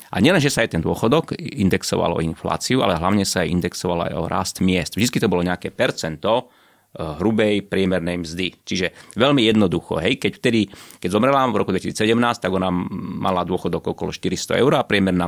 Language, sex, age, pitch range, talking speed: Slovak, male, 30-49, 90-105 Hz, 185 wpm